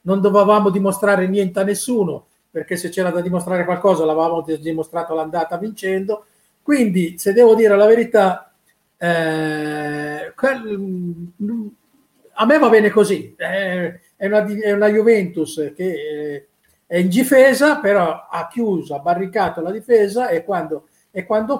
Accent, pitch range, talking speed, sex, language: native, 160-205 Hz, 135 wpm, male, Italian